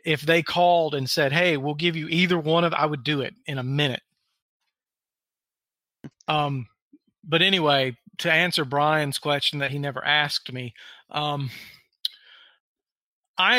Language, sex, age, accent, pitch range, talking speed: English, male, 40-59, American, 135-160 Hz, 145 wpm